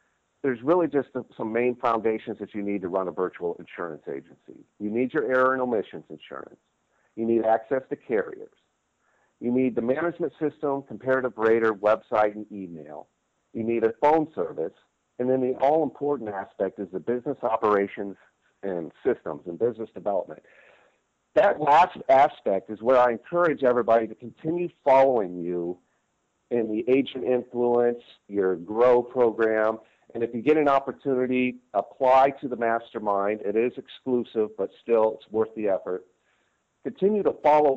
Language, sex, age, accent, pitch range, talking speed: English, male, 50-69, American, 105-130 Hz, 155 wpm